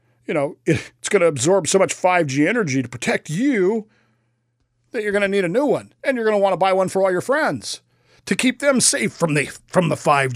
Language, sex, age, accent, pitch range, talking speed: English, male, 40-59, American, 120-170 Hz, 225 wpm